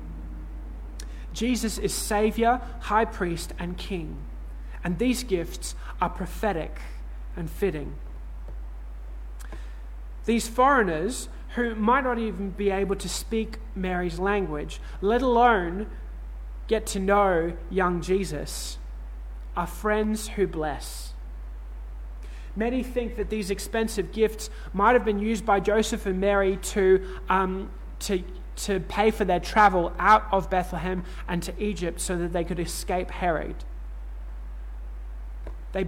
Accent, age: Australian, 20-39